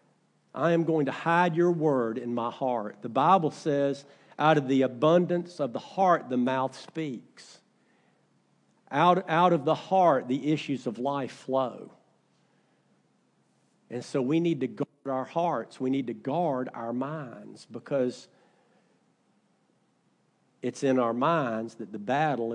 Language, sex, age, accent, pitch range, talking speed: English, male, 50-69, American, 125-170 Hz, 145 wpm